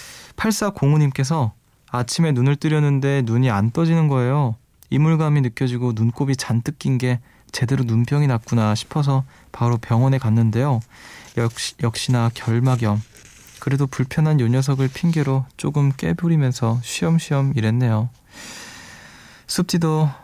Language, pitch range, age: Korean, 115-140 Hz, 20-39